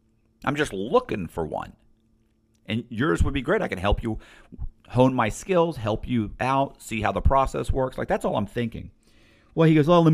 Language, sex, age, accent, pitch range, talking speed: English, male, 40-59, American, 105-145 Hz, 205 wpm